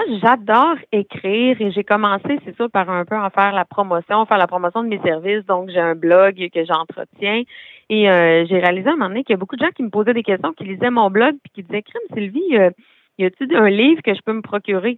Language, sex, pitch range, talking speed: French, female, 175-215 Hz, 265 wpm